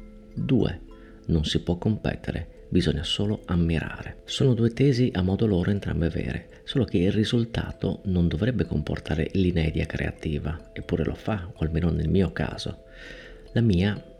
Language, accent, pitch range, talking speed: Italian, native, 80-110 Hz, 150 wpm